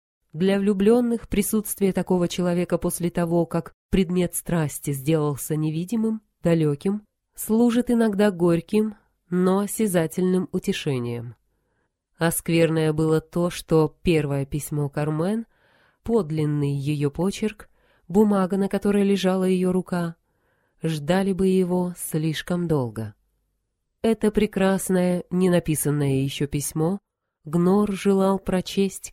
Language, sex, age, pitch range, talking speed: Russian, female, 20-39, 150-195 Hz, 100 wpm